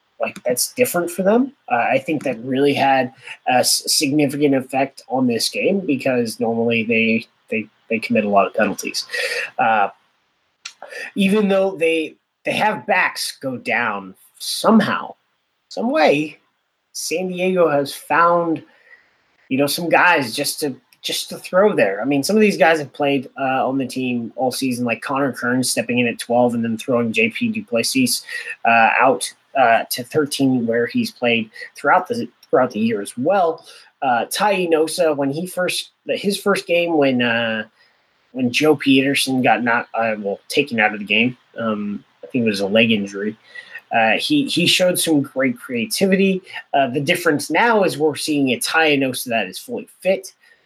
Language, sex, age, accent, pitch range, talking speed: English, male, 30-49, American, 125-195 Hz, 170 wpm